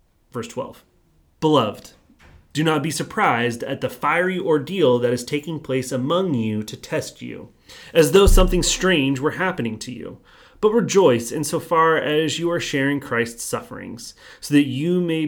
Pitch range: 120-160 Hz